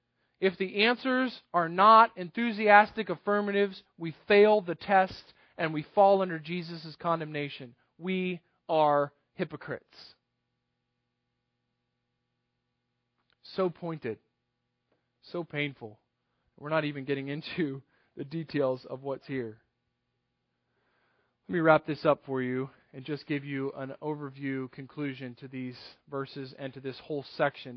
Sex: male